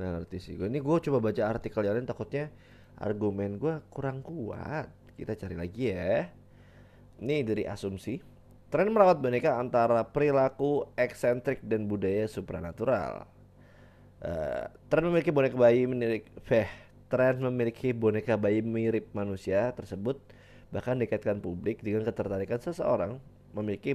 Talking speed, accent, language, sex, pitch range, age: 125 wpm, native, Indonesian, male, 100-130 Hz, 20-39